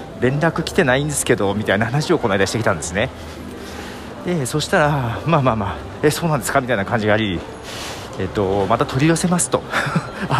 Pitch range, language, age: 95-150 Hz, Japanese, 40-59